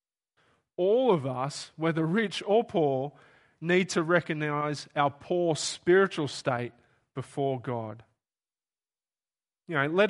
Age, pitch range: 30-49, 135-180 Hz